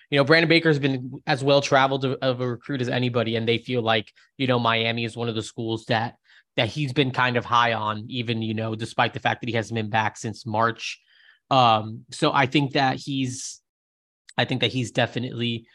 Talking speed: 220 wpm